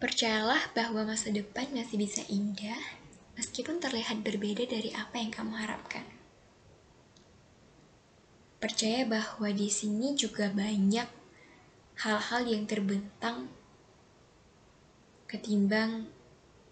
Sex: female